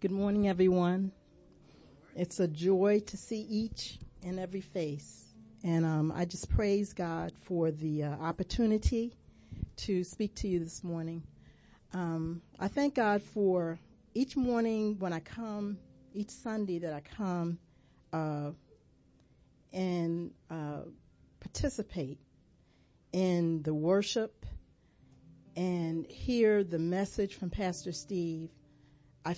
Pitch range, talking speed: 165-205 Hz, 120 wpm